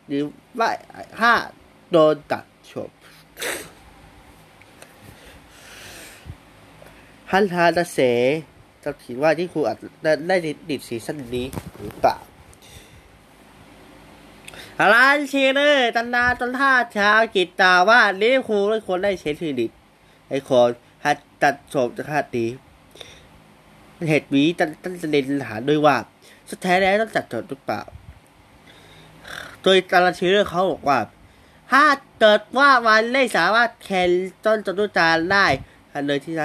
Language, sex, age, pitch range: Thai, male, 20-39, 125-195 Hz